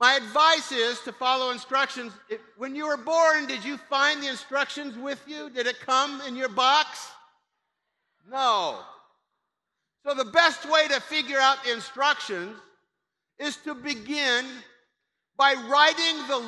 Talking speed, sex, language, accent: 140 wpm, male, English, American